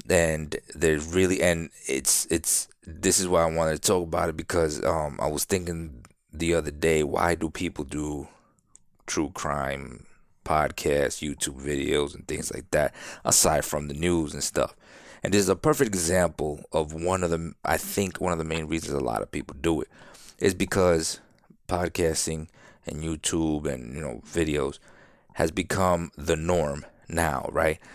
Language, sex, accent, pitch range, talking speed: English, male, American, 75-90 Hz, 170 wpm